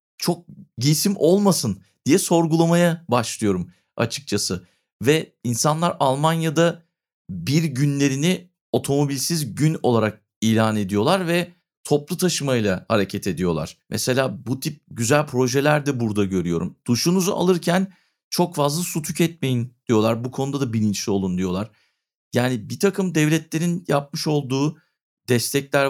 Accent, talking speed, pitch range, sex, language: native, 115 wpm, 120-170 Hz, male, Turkish